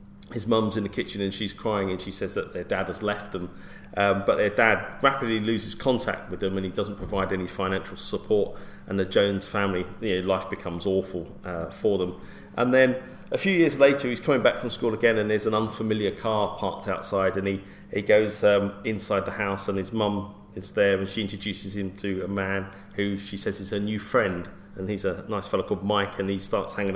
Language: English